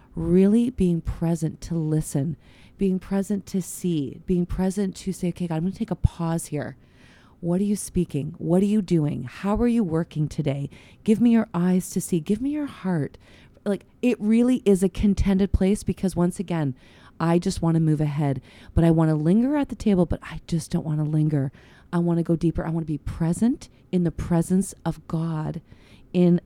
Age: 30-49